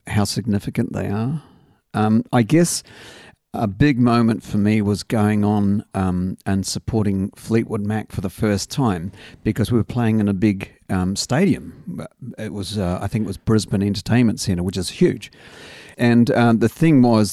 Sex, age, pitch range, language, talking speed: male, 50-69, 100-115 Hz, English, 175 wpm